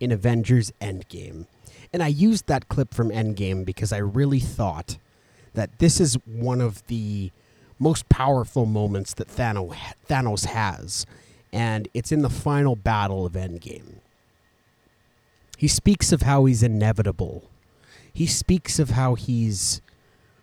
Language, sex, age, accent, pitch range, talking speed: English, male, 30-49, American, 105-130 Hz, 130 wpm